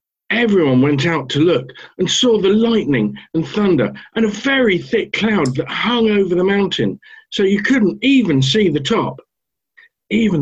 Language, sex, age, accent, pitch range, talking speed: English, male, 50-69, British, 125-200 Hz, 165 wpm